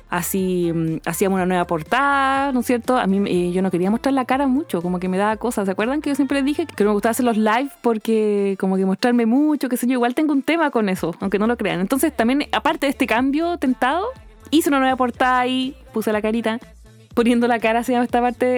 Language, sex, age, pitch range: English, female, 20-39, 200-260 Hz